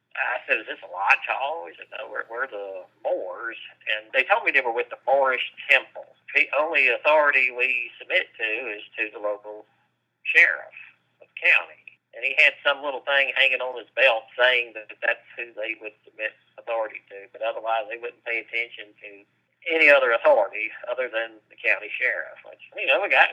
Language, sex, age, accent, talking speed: English, male, 40-59, American, 195 wpm